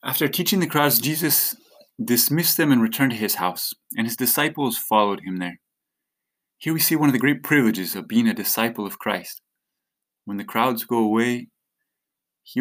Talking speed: 180 wpm